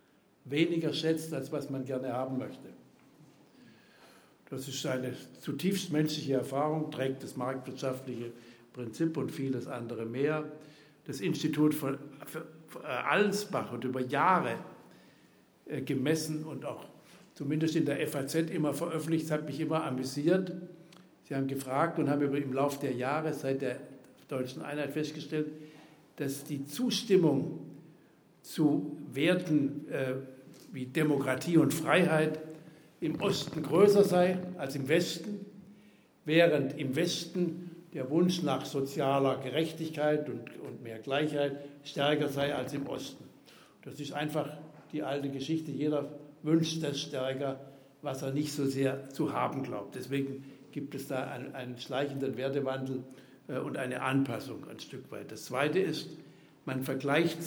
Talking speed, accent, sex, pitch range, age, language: 135 wpm, German, male, 135-155 Hz, 60-79, German